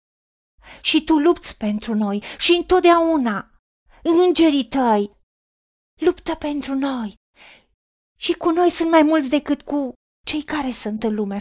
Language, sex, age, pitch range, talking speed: Romanian, female, 40-59, 225-310 Hz, 130 wpm